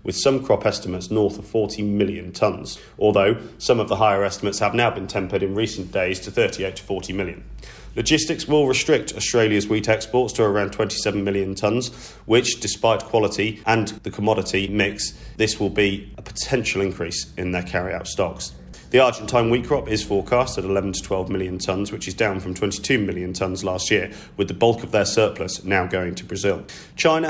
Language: English